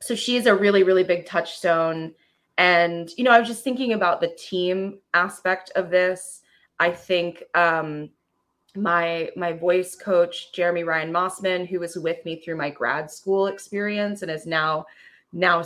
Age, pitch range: 20-39, 170-200 Hz